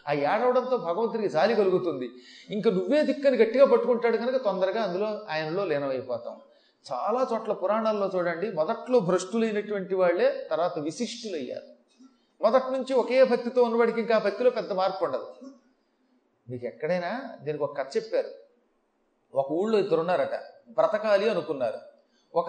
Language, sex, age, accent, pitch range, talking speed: Telugu, male, 30-49, native, 190-260 Hz, 125 wpm